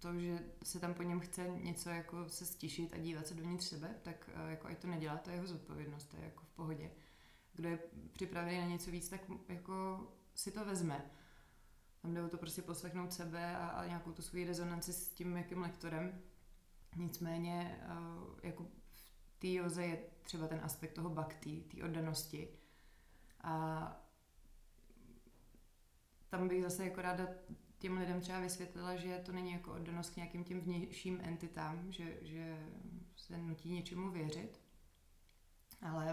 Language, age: Czech, 20-39